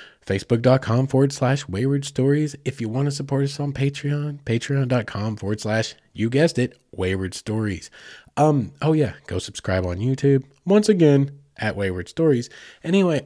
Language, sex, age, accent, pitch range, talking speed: English, male, 20-39, American, 105-145 Hz, 160 wpm